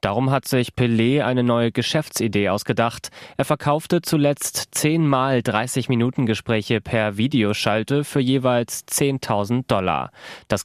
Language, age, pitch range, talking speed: German, 20-39, 110-125 Hz, 120 wpm